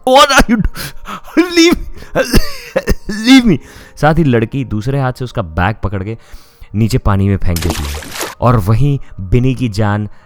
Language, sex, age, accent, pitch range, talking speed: Hindi, male, 30-49, native, 100-120 Hz, 170 wpm